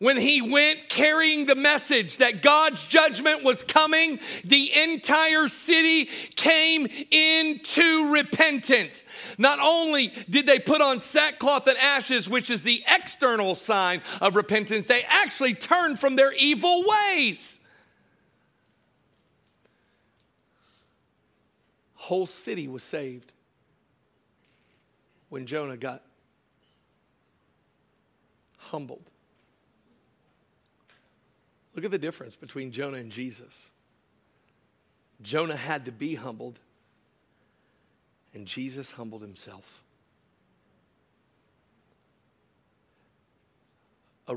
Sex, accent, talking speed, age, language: male, American, 90 wpm, 50-69, English